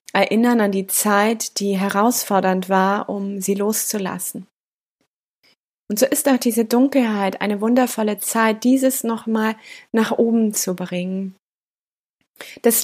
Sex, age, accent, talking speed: female, 20-39, German, 120 wpm